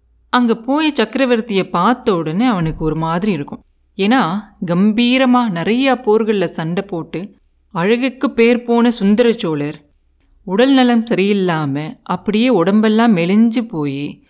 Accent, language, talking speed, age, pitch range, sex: native, Tamil, 115 wpm, 30-49, 175-235 Hz, female